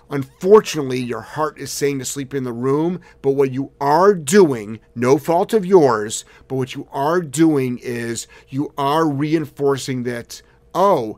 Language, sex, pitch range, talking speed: English, male, 125-155 Hz, 160 wpm